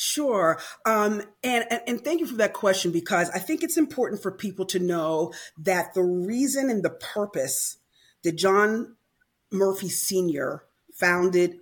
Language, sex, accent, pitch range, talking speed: English, female, American, 170-210 Hz, 150 wpm